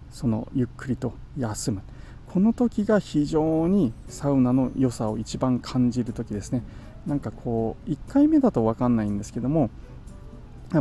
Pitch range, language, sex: 110-155 Hz, Japanese, male